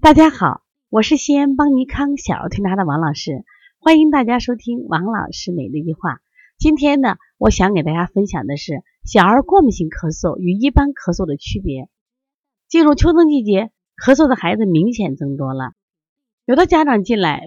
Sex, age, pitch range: female, 30-49, 180-285 Hz